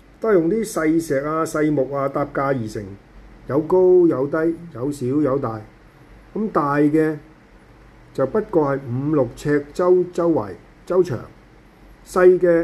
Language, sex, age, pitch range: Chinese, male, 50-69, 140-190 Hz